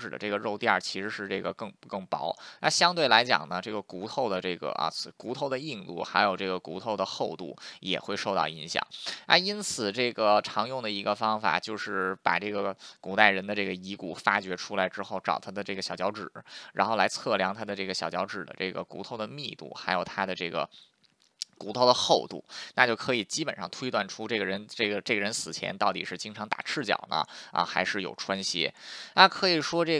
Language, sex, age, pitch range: Chinese, male, 20-39, 95-135 Hz